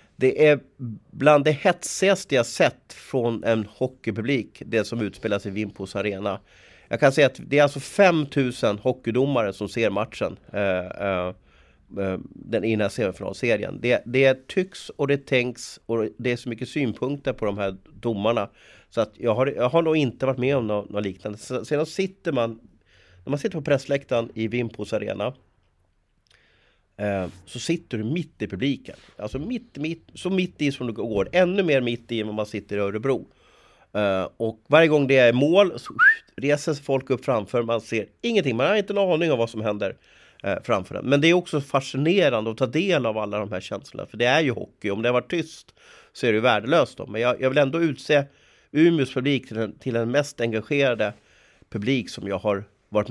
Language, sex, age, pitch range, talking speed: Swedish, male, 30-49, 105-145 Hz, 190 wpm